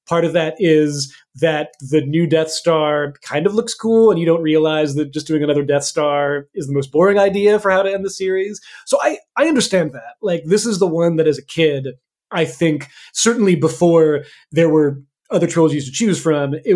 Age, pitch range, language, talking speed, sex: 30-49, 150-190 Hz, English, 215 wpm, male